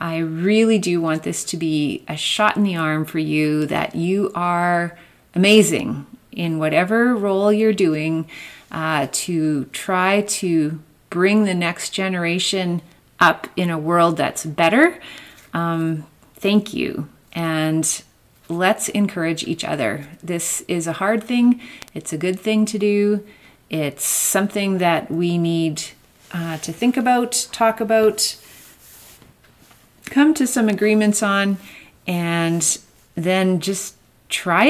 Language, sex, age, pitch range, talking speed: English, female, 30-49, 165-215 Hz, 130 wpm